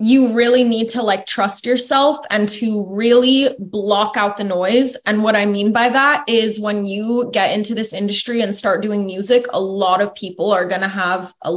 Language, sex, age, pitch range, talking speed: English, female, 20-39, 195-245 Hz, 205 wpm